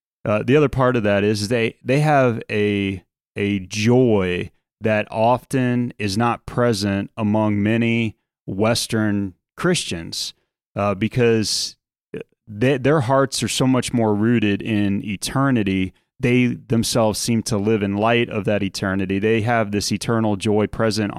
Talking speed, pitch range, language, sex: 140 wpm, 100-120 Hz, English, male